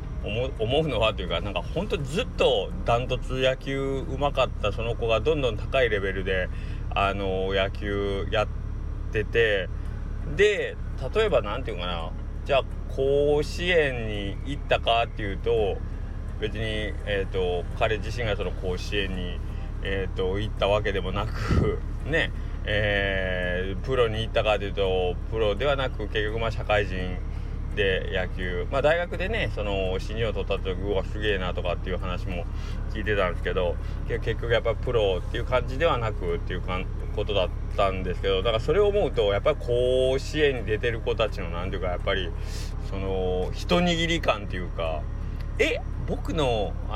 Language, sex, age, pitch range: Japanese, male, 20-39, 90-110 Hz